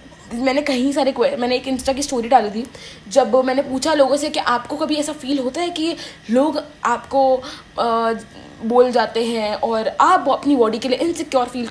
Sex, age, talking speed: female, 20-39, 195 wpm